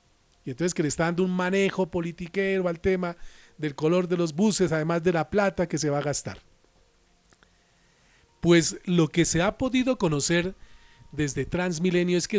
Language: Spanish